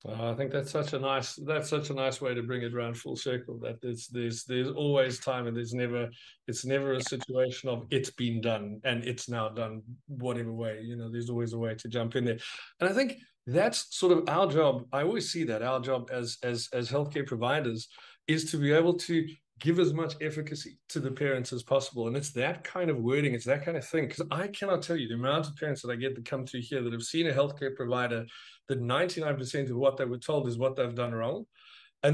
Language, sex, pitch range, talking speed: English, male, 120-155 Hz, 245 wpm